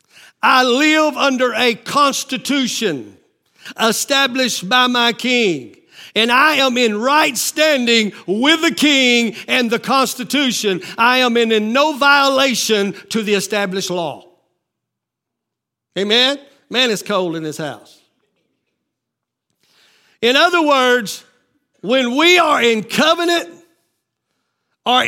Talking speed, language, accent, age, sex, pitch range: 110 wpm, English, American, 50-69, male, 220-280 Hz